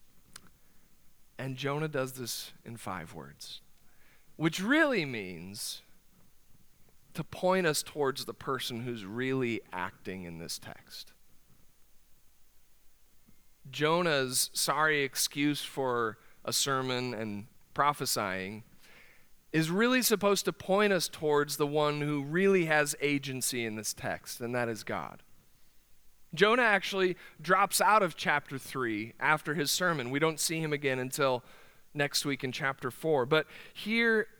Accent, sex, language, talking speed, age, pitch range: American, male, English, 125 wpm, 40-59, 125-170 Hz